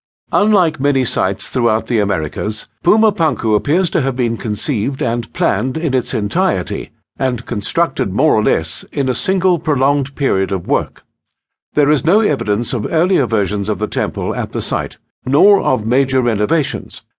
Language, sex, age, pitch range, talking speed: English, male, 60-79, 115-155 Hz, 165 wpm